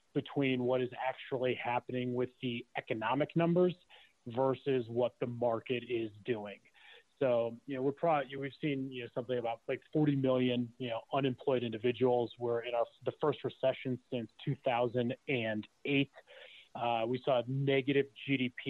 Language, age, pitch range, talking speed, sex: English, 30-49, 120-140 Hz, 155 wpm, male